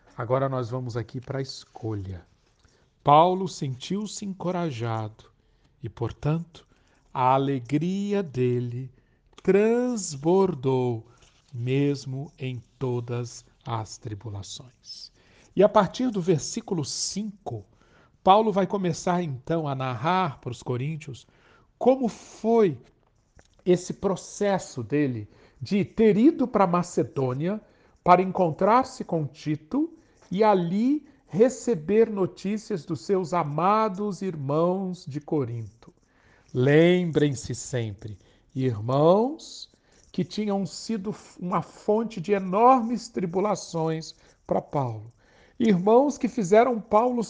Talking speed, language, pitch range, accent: 100 wpm, Portuguese, 130-205 Hz, Brazilian